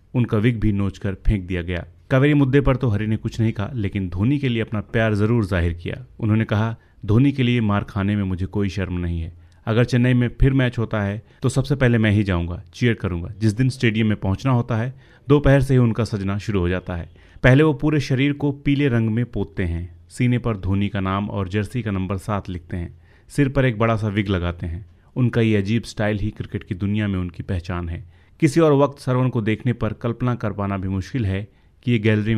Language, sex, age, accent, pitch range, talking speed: Hindi, male, 30-49, native, 95-125 Hz, 235 wpm